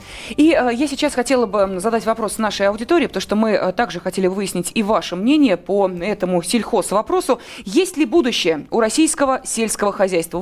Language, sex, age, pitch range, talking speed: Russian, female, 20-39, 205-265 Hz, 175 wpm